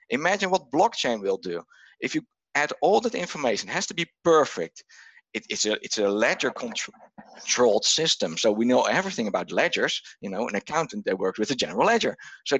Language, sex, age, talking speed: English, male, 50-69, 195 wpm